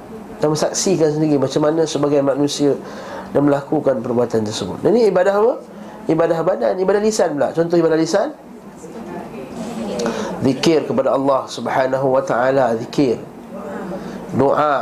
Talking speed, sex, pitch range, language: 125 wpm, male, 130-180 Hz, Malay